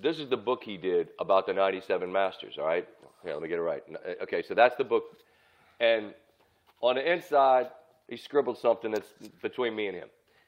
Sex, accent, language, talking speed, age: male, American, English, 205 wpm, 40-59